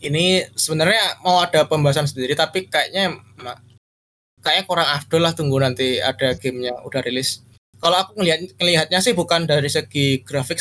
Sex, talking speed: male, 145 wpm